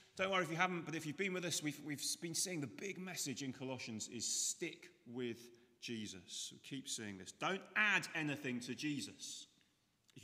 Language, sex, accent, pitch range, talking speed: English, male, British, 120-155 Hz, 200 wpm